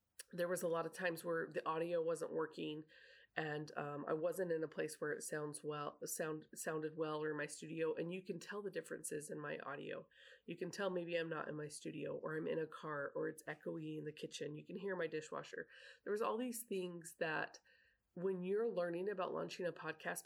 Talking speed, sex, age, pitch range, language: 225 wpm, female, 20-39, 155-190 Hz, English